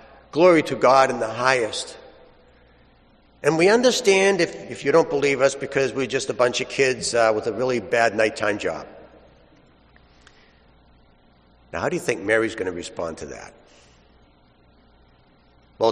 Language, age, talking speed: English, 60-79, 155 wpm